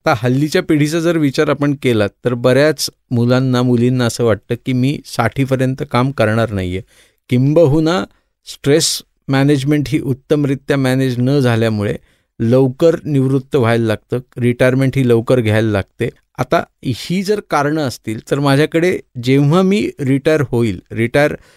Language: Marathi